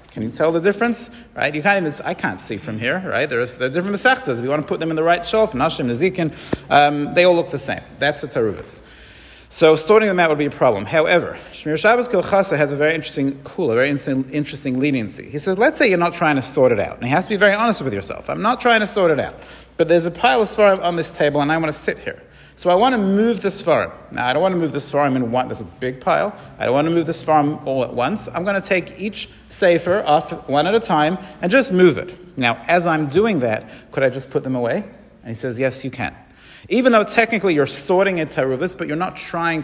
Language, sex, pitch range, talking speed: English, male, 140-190 Hz, 270 wpm